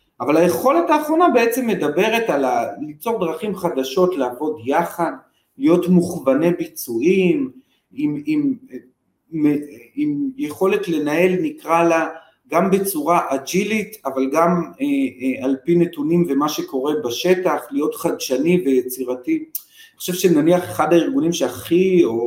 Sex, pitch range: male, 145-220 Hz